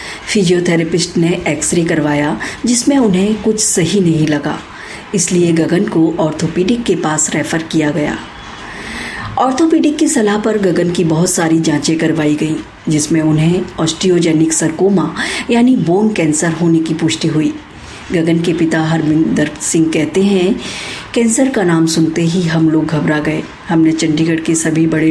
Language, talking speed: Hindi, 150 wpm